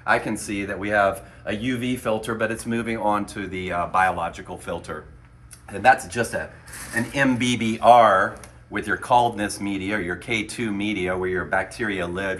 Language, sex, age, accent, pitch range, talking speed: English, male, 40-59, American, 95-115 Hz, 165 wpm